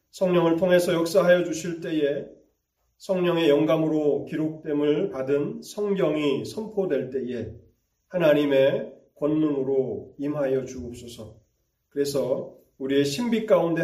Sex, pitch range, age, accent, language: male, 130-165 Hz, 30-49, native, Korean